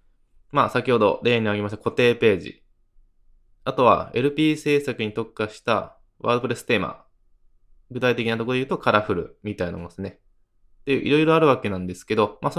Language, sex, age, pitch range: Japanese, male, 20-39, 105-130 Hz